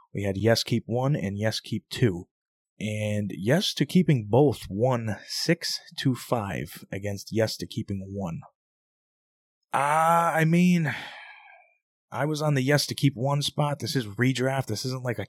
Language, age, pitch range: English, 20-39, 100-130 Hz